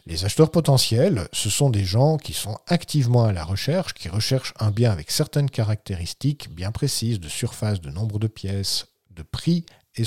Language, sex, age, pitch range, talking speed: French, male, 50-69, 105-145 Hz, 185 wpm